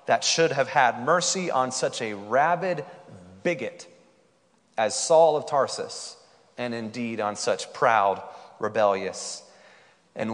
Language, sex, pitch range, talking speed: English, male, 105-135 Hz, 120 wpm